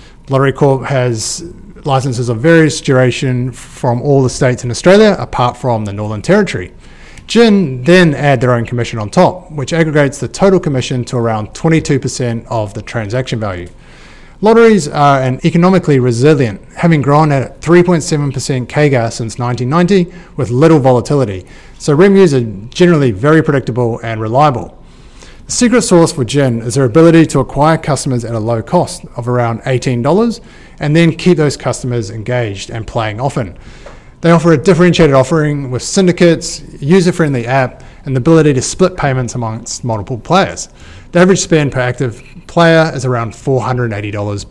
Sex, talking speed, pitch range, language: male, 150 wpm, 120-165 Hz, English